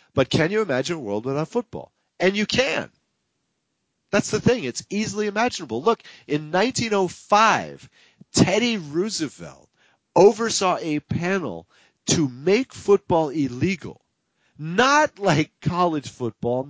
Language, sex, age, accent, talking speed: English, male, 40-59, American, 120 wpm